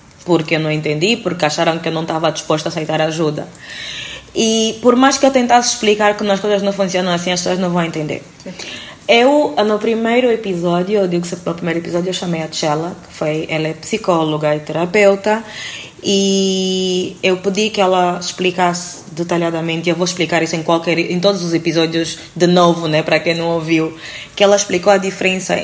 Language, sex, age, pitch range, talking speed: Portuguese, female, 20-39, 165-205 Hz, 190 wpm